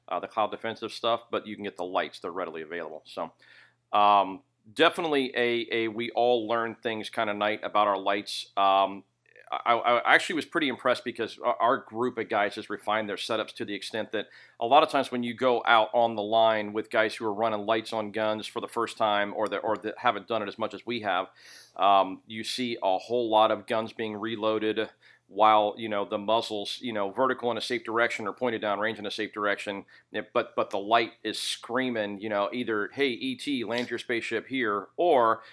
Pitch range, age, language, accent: 105-120 Hz, 40-59, English, American